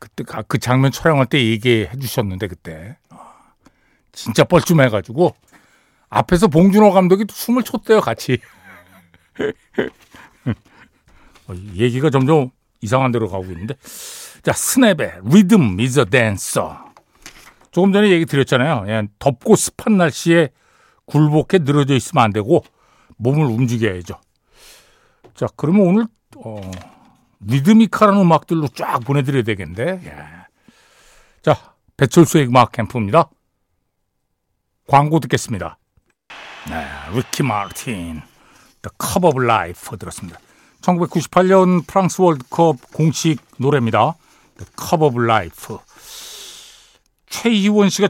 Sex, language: male, Korean